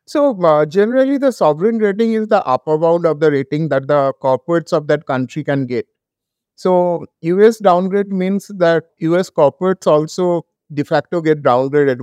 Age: 50-69